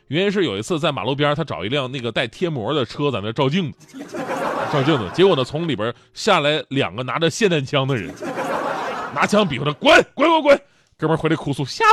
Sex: male